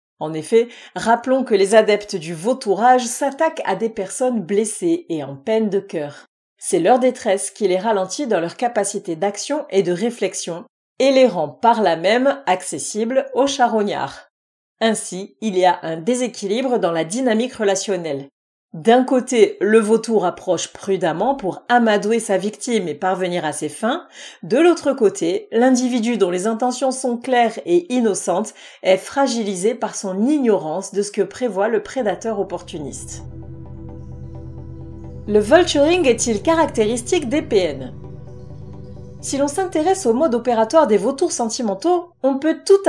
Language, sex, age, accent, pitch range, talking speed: French, female, 40-59, French, 190-255 Hz, 150 wpm